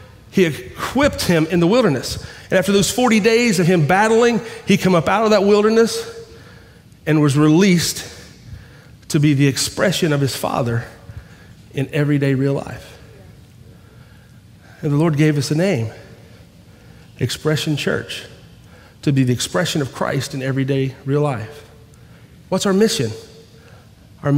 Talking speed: 145 wpm